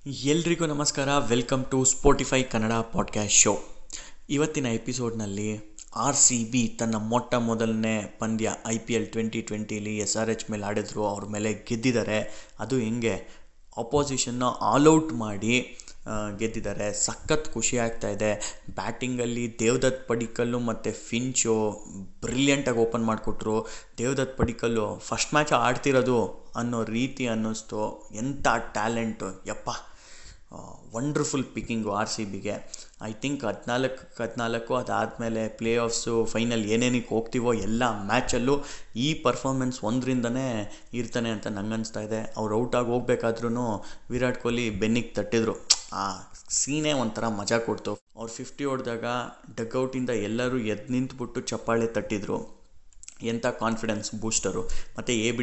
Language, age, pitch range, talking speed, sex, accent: Kannada, 20-39, 105-125 Hz, 120 wpm, male, native